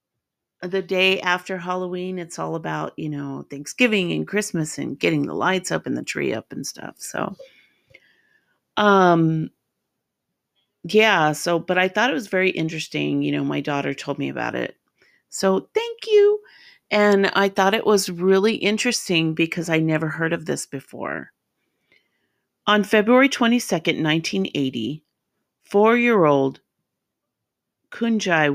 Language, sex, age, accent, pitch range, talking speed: English, female, 40-59, American, 155-195 Hz, 135 wpm